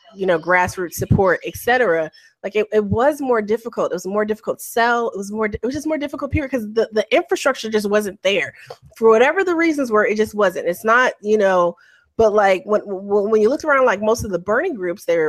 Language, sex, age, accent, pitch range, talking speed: English, female, 20-39, American, 190-245 Hz, 235 wpm